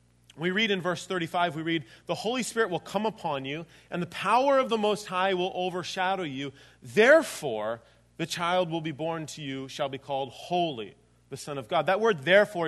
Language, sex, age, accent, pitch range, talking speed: English, male, 30-49, American, 155-195 Hz, 205 wpm